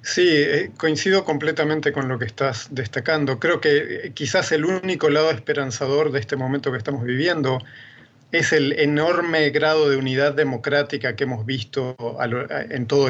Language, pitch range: Spanish, 130-155 Hz